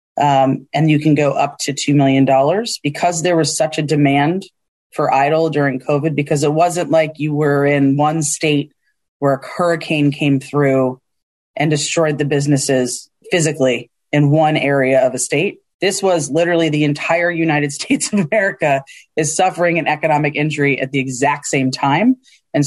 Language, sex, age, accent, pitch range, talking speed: English, female, 30-49, American, 140-165 Hz, 170 wpm